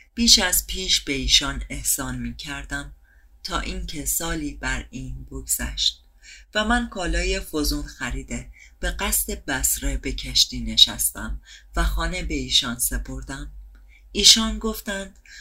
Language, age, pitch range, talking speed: Persian, 30-49, 140-215 Hz, 125 wpm